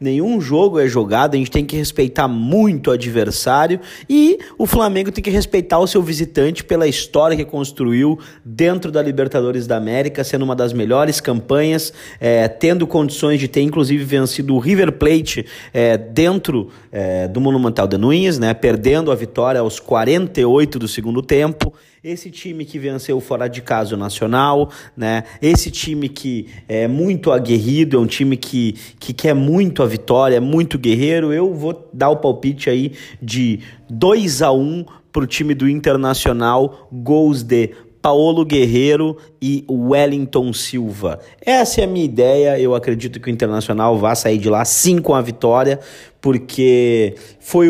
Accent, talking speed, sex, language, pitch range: Brazilian, 160 wpm, male, Portuguese, 120-155 Hz